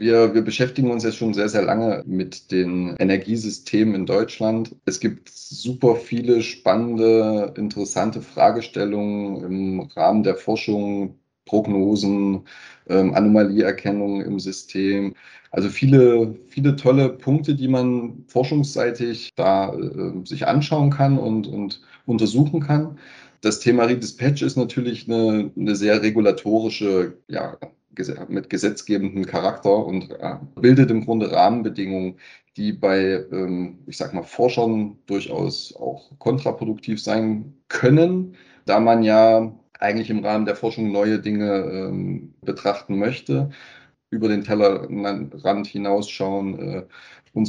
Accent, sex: German, male